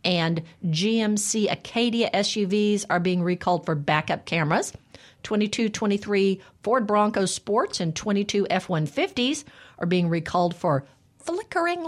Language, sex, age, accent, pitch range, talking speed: English, female, 50-69, American, 165-230 Hz, 110 wpm